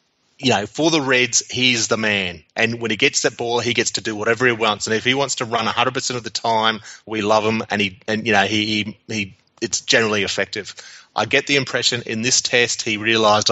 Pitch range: 105-120 Hz